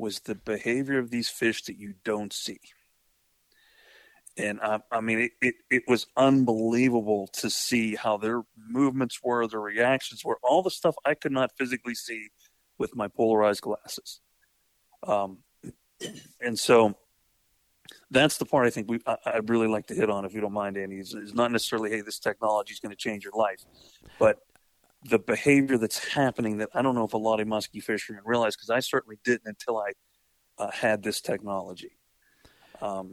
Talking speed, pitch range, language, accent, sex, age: 175 wpm, 105-130 Hz, English, American, male, 40-59